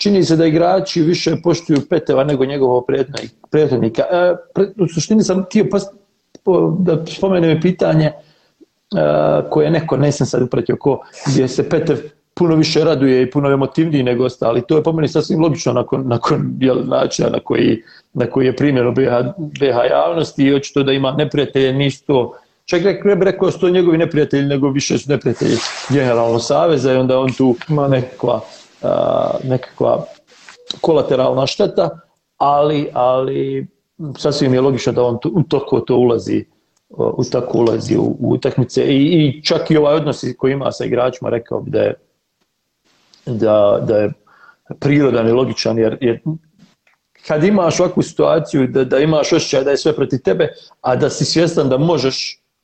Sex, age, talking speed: male, 40-59, 165 wpm